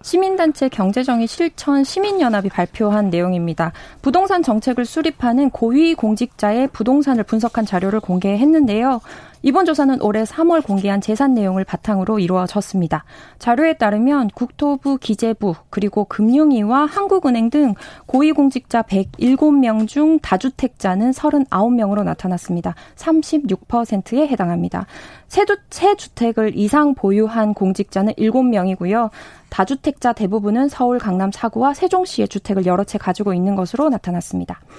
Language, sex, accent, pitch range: Korean, female, native, 210-285 Hz